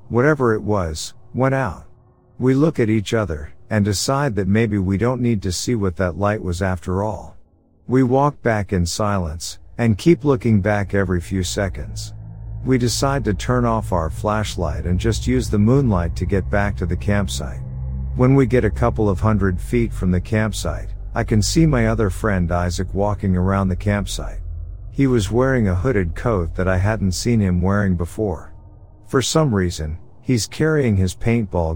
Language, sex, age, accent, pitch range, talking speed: English, male, 50-69, American, 90-120 Hz, 185 wpm